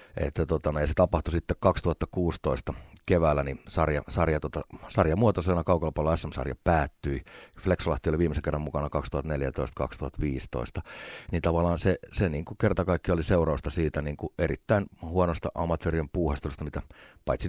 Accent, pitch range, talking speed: native, 75-90 Hz, 135 wpm